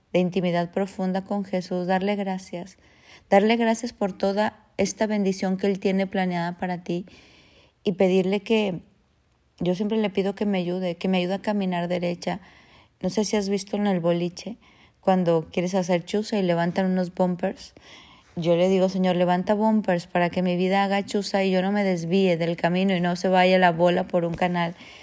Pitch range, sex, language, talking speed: 175-195 Hz, female, Spanish, 190 wpm